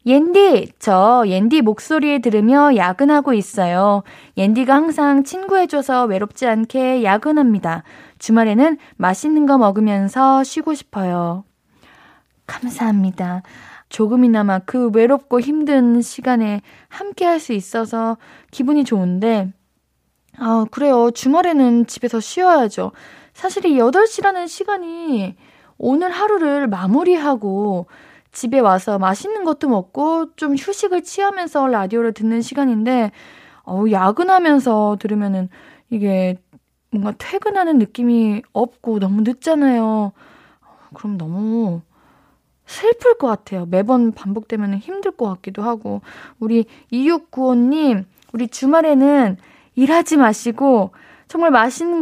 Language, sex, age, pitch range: Korean, female, 20-39, 210-295 Hz